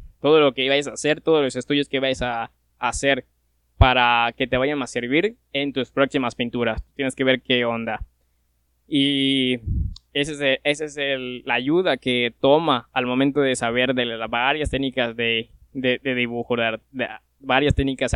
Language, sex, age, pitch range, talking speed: Spanish, male, 20-39, 115-140 Hz, 190 wpm